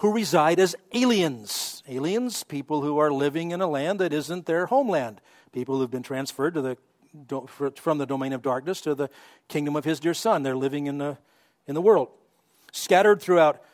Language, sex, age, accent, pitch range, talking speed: English, male, 50-69, American, 145-205 Hz, 175 wpm